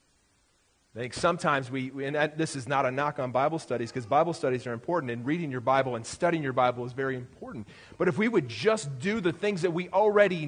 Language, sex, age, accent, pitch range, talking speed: English, male, 40-59, American, 115-145 Hz, 230 wpm